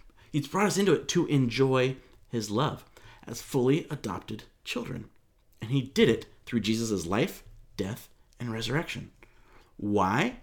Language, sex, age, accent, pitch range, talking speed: English, male, 40-59, American, 120-165 Hz, 140 wpm